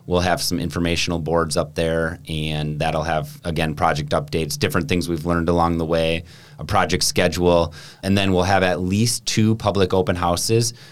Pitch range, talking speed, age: 80-95 Hz, 180 wpm, 30-49